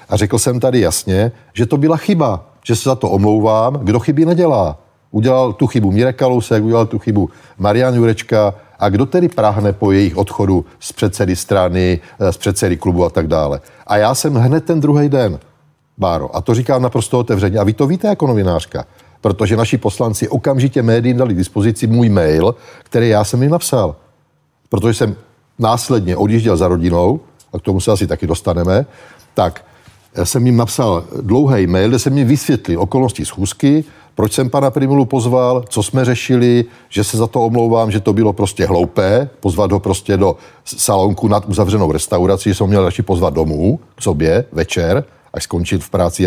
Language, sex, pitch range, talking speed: Czech, male, 100-130 Hz, 185 wpm